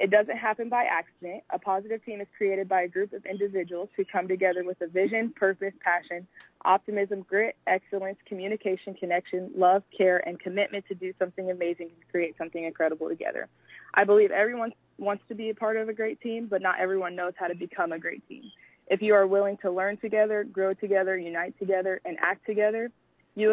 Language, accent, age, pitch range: English, American, 20-39, 170-195 Hz